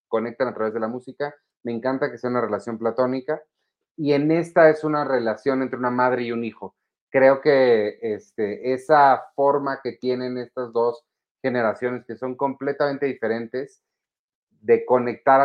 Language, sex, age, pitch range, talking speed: Spanish, male, 30-49, 115-135 Hz, 160 wpm